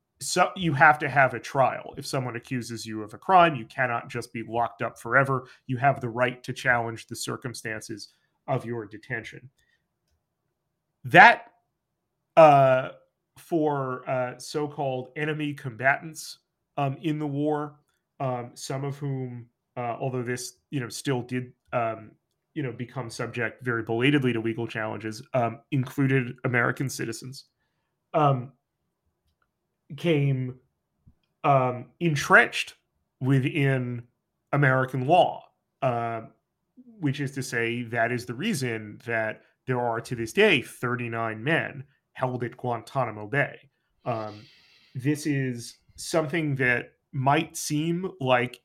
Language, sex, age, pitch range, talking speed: English, male, 30-49, 120-145 Hz, 130 wpm